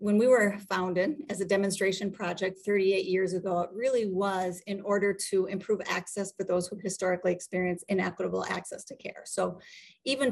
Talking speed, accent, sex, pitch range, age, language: 175 wpm, American, female, 185-230 Hz, 40-59, English